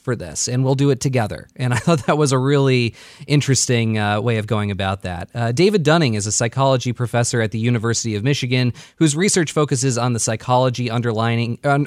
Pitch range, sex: 115-150 Hz, male